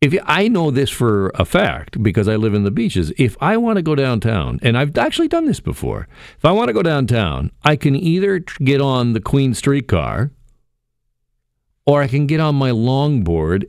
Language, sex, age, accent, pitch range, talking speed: English, male, 50-69, American, 105-160 Hz, 205 wpm